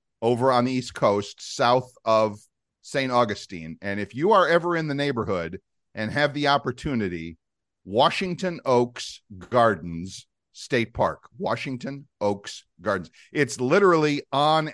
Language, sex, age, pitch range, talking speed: English, male, 40-59, 105-125 Hz, 130 wpm